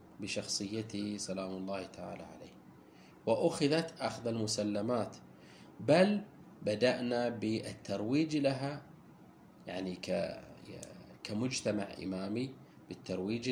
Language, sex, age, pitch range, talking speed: Arabic, male, 30-49, 100-130 Hz, 70 wpm